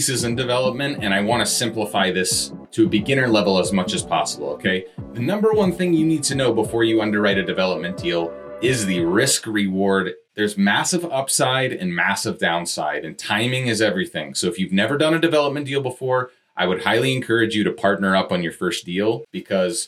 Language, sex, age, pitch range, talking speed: English, male, 30-49, 95-130 Hz, 200 wpm